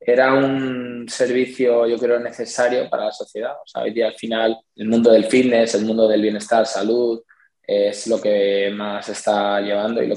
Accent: Spanish